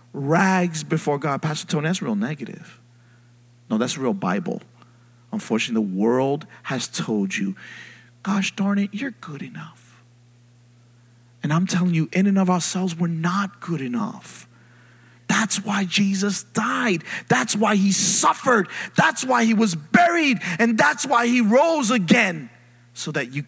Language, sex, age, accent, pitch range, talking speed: English, male, 40-59, American, 120-200 Hz, 150 wpm